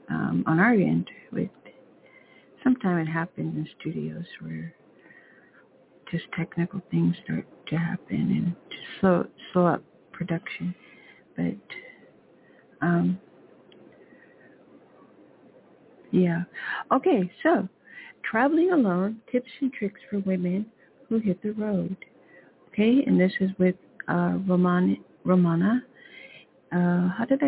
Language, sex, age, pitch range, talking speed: English, female, 60-79, 175-210 Hz, 105 wpm